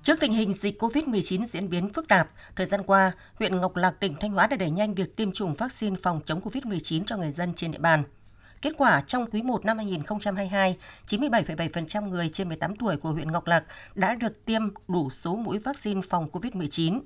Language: Vietnamese